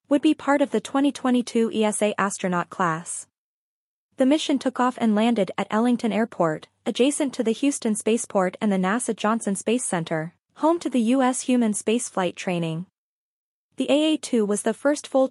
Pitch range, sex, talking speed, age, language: 195-245 Hz, female, 165 wpm, 20-39, English